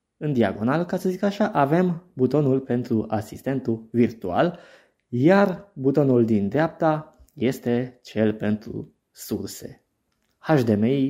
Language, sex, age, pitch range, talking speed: Romanian, male, 20-39, 115-165 Hz, 110 wpm